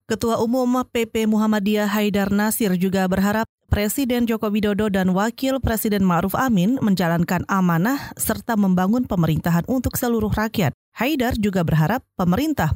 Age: 30-49